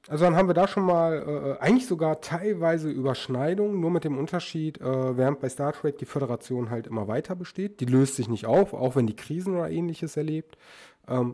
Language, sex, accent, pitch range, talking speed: German, male, German, 125-165 Hz, 210 wpm